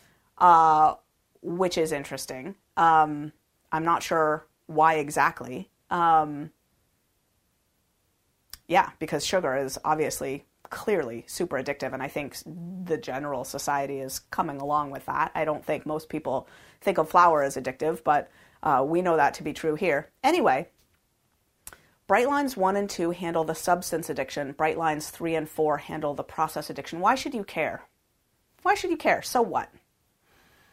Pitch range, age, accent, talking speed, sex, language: 150-185 Hz, 30-49, American, 150 wpm, female, English